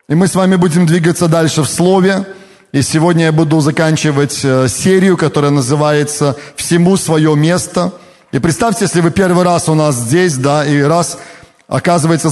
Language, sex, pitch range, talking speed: Russian, male, 150-175 Hz, 165 wpm